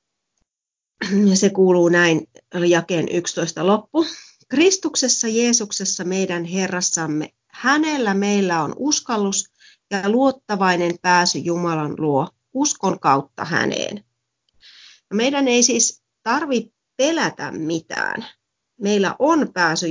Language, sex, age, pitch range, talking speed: Finnish, female, 30-49, 175-235 Hz, 95 wpm